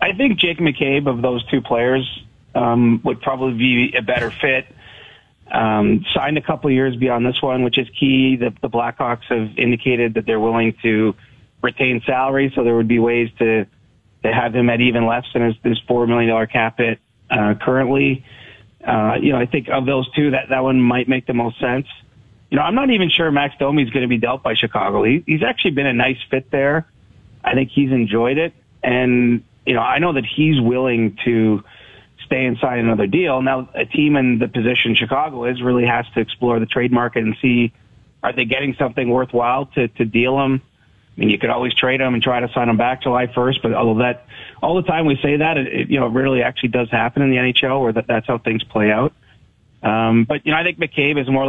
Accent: American